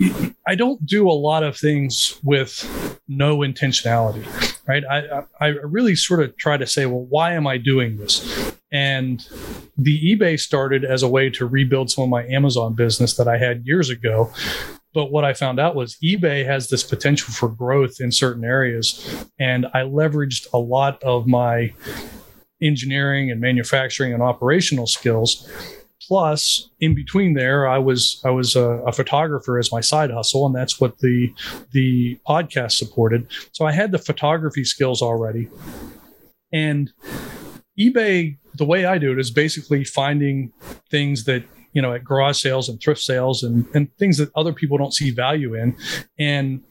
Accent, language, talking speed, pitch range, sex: American, English, 170 wpm, 125-150 Hz, male